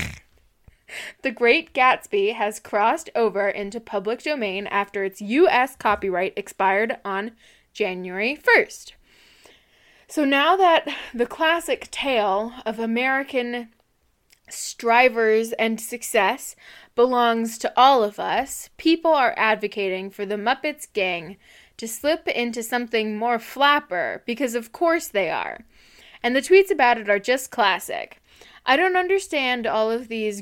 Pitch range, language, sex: 215-280 Hz, English, female